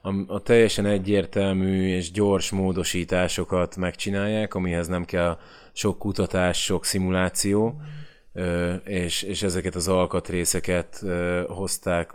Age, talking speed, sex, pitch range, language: 20-39, 100 wpm, male, 90-100 Hz, Hungarian